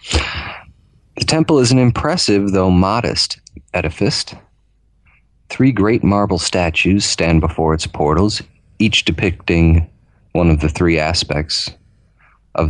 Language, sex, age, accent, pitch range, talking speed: English, male, 40-59, American, 85-105 Hz, 115 wpm